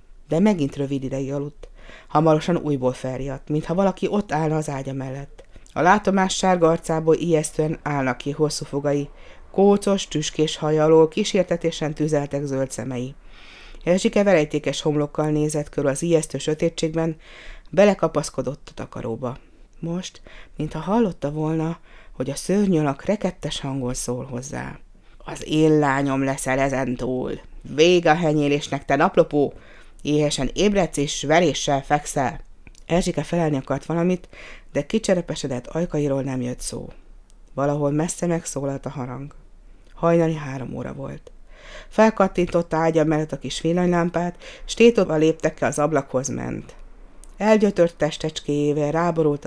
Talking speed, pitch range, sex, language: 125 wpm, 135-170 Hz, female, Hungarian